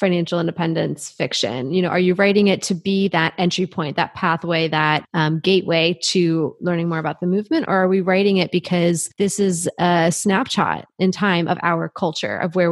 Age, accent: 20-39, American